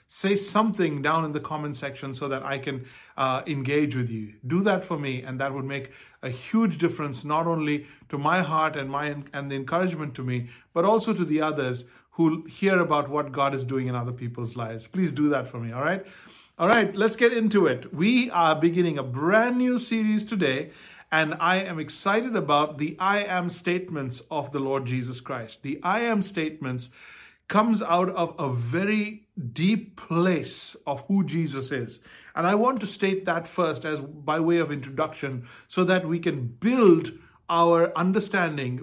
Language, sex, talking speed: English, male, 190 wpm